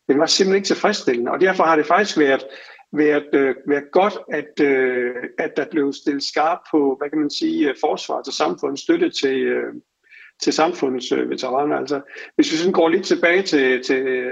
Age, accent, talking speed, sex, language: 60-79, native, 165 wpm, male, Danish